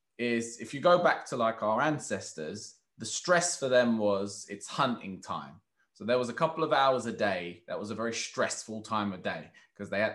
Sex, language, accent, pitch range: male, English, British, 110-135 Hz